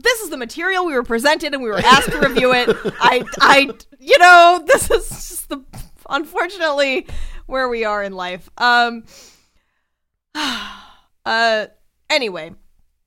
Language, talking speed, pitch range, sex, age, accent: English, 140 wpm, 180-255 Hz, female, 20-39, American